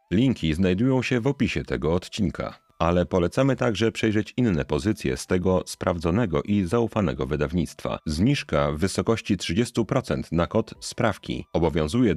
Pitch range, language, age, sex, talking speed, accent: 80-120 Hz, Polish, 40-59, male, 135 wpm, native